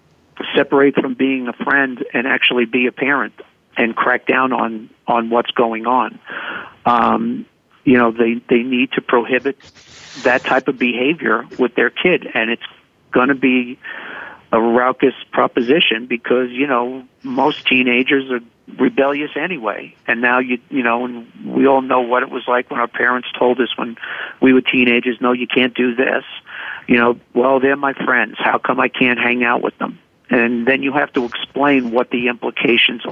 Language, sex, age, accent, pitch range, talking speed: English, male, 50-69, American, 120-135 Hz, 180 wpm